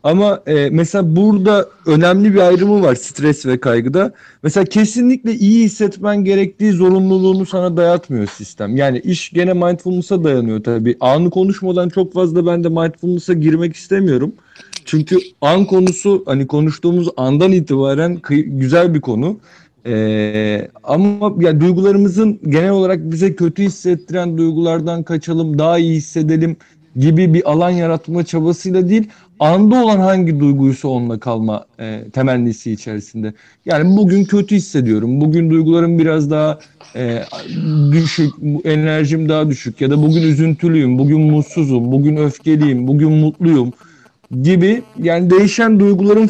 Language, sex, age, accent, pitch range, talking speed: Turkish, male, 40-59, native, 145-185 Hz, 130 wpm